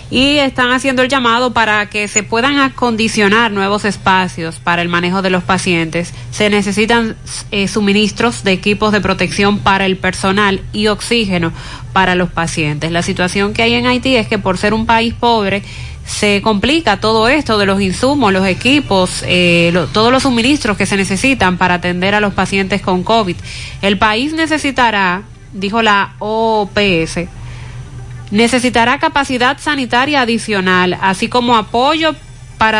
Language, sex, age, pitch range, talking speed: Spanish, female, 30-49, 180-235 Hz, 155 wpm